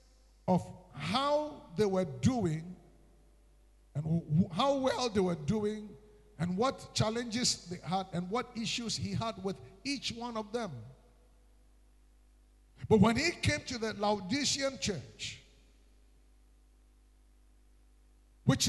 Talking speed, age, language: 110 wpm, 50-69, English